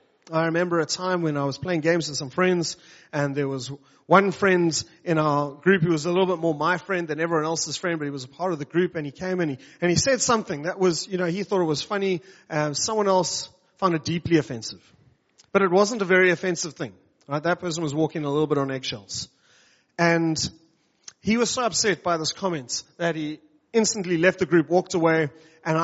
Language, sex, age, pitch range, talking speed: English, male, 30-49, 150-185 Hz, 225 wpm